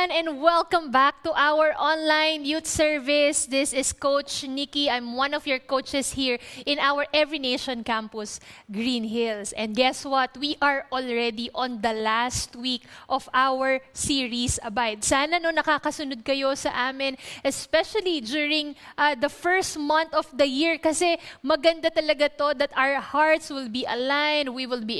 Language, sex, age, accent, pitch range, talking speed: English, female, 20-39, Filipino, 255-310 Hz, 160 wpm